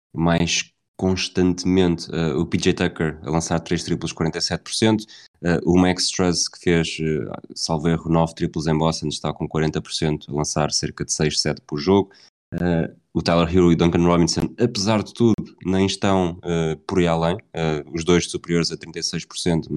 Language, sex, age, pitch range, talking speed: Portuguese, male, 20-39, 80-95 Hz, 165 wpm